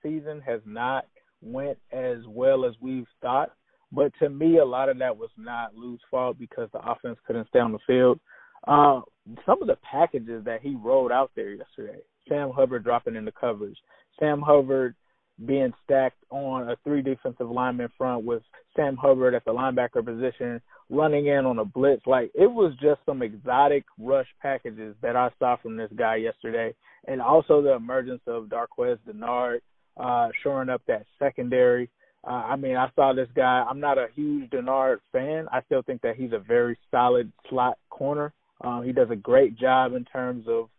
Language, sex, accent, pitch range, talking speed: English, male, American, 120-145 Hz, 185 wpm